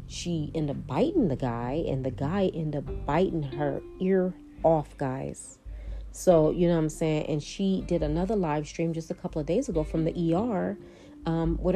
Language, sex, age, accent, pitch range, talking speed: English, female, 30-49, American, 140-170 Hz, 200 wpm